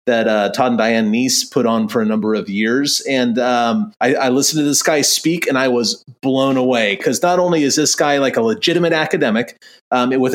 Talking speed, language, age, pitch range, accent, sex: 225 wpm, English, 30-49, 125-180 Hz, American, male